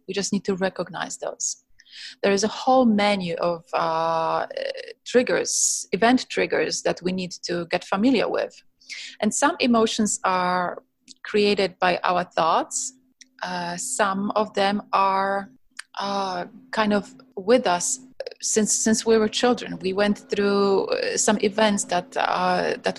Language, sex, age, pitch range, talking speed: English, female, 30-49, 195-260 Hz, 140 wpm